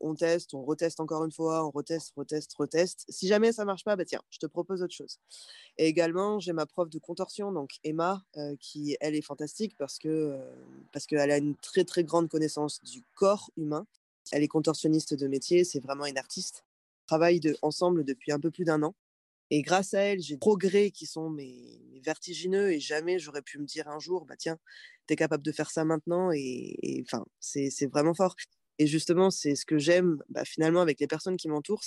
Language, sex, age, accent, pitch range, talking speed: French, female, 20-39, French, 145-190 Hz, 225 wpm